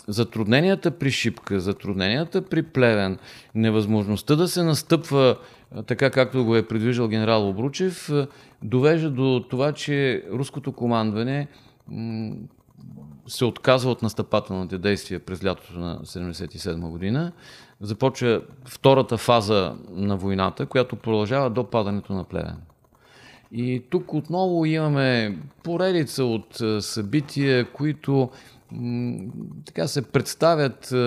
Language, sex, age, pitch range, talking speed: Bulgarian, male, 40-59, 105-140 Hz, 105 wpm